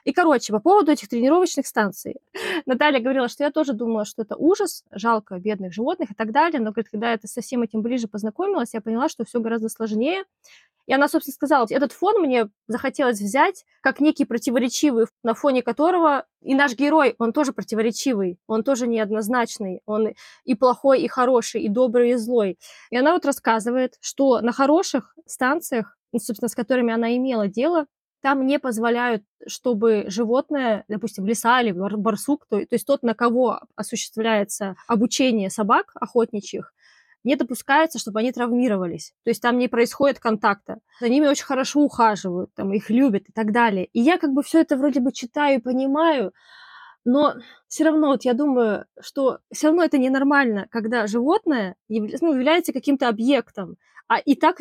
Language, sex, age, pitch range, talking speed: Russian, female, 20-39, 225-290 Hz, 175 wpm